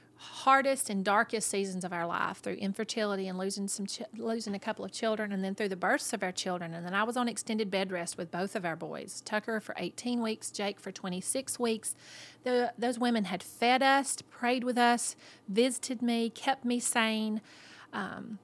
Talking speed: 195 wpm